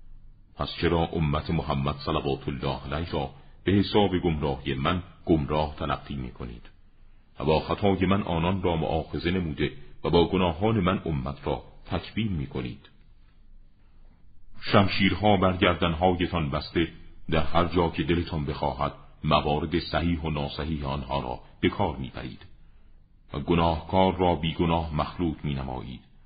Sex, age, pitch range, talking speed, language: male, 40-59, 70-90 Hz, 130 wpm, Persian